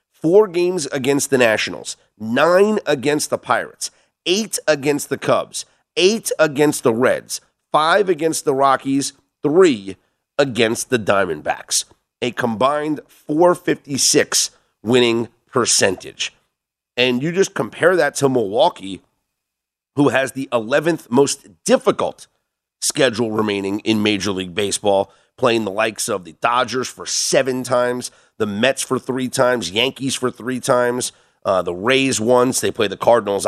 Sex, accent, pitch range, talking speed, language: male, American, 110-145 Hz, 135 wpm, English